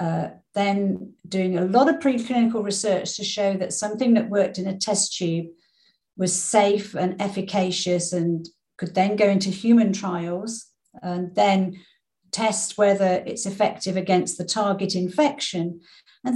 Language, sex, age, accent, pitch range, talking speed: English, female, 50-69, British, 190-255 Hz, 145 wpm